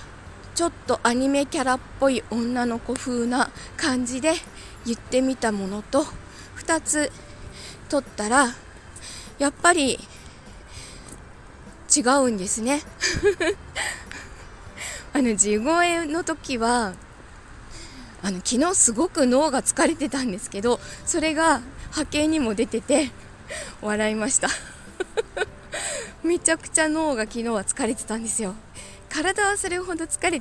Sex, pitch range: female, 215-310 Hz